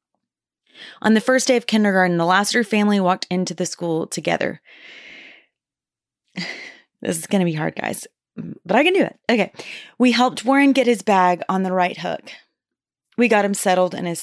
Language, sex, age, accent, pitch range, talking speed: English, female, 30-49, American, 185-240 Hz, 180 wpm